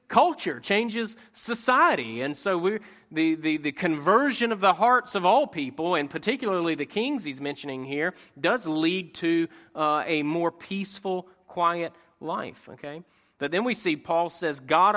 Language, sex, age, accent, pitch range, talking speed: English, male, 30-49, American, 140-180 Hz, 160 wpm